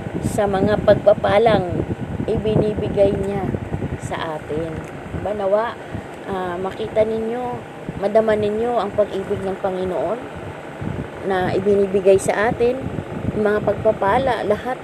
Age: 20-39